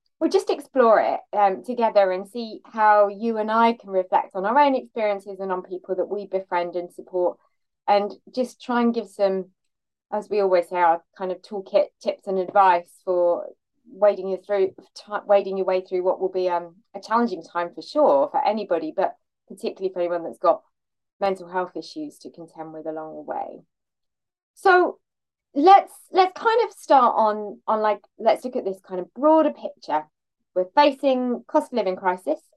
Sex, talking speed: female, 185 wpm